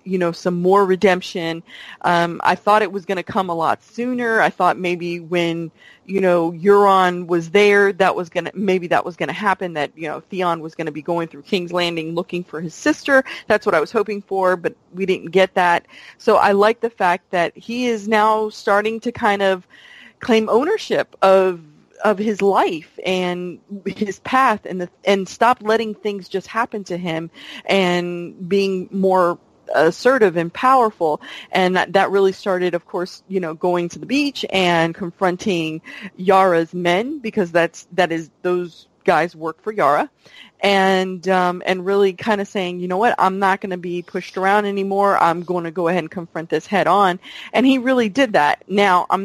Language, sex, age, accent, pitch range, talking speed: English, female, 30-49, American, 175-210 Hz, 195 wpm